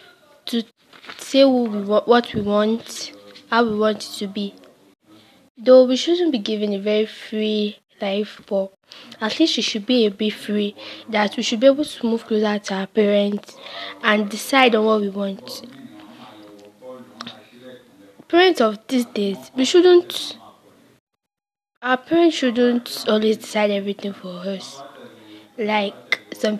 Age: 10-29